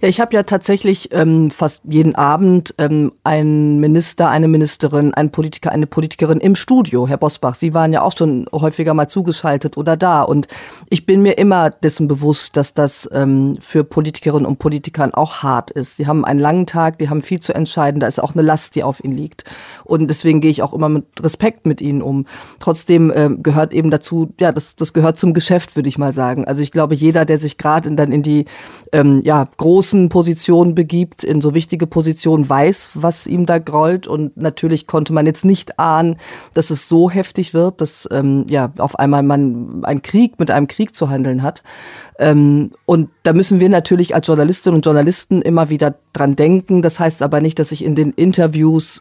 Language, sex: German, female